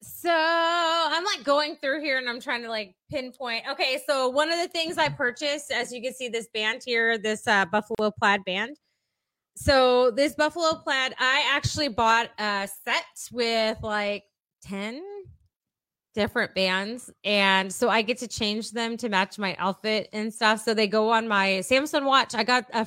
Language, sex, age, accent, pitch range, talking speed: English, female, 20-39, American, 200-265 Hz, 180 wpm